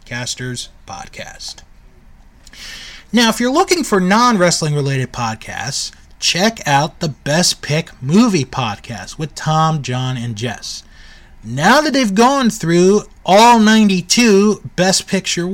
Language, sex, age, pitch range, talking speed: English, male, 20-39, 135-205 Hz, 120 wpm